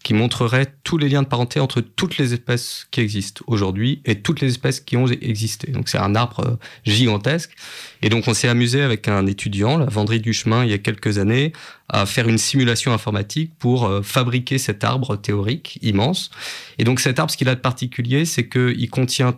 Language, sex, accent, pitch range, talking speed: French, male, French, 110-140 Hz, 215 wpm